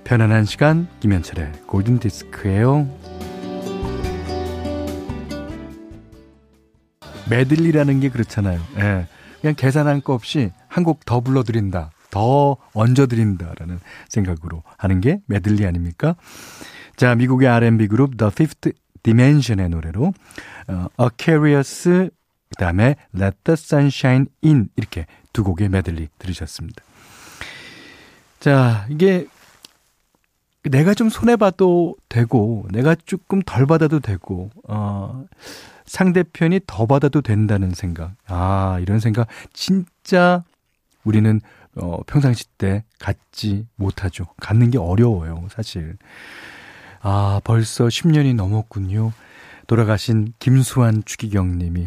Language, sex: Korean, male